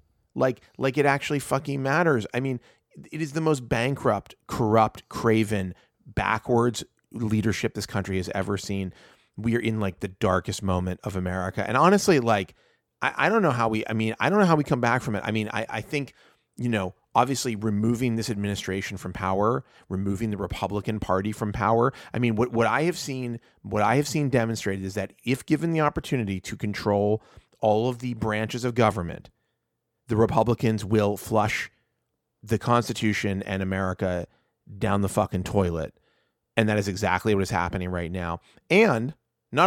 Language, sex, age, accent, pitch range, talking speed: English, male, 30-49, American, 100-125 Hz, 180 wpm